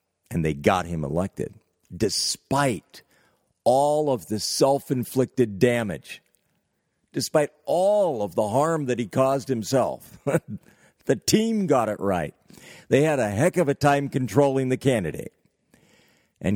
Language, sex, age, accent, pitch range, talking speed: English, male, 50-69, American, 105-145 Hz, 130 wpm